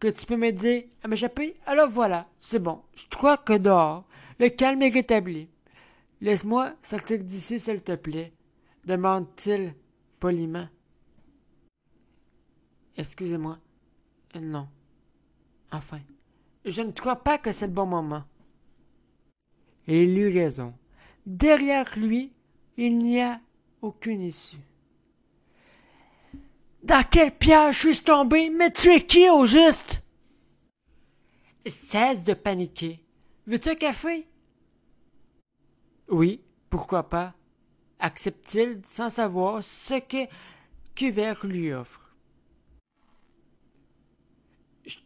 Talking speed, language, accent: 105 wpm, French, French